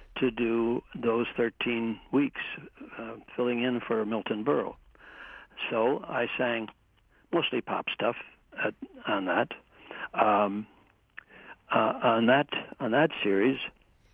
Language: English